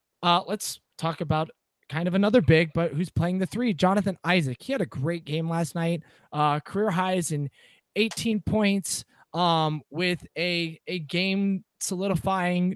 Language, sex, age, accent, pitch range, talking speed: English, male, 20-39, American, 150-190 Hz, 160 wpm